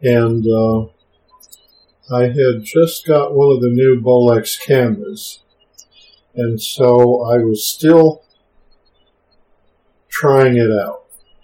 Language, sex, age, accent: English, male, 50-69, American